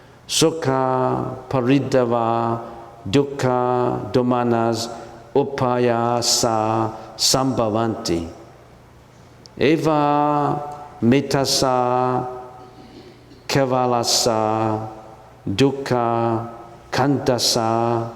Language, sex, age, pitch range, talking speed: English, male, 50-69, 115-150 Hz, 35 wpm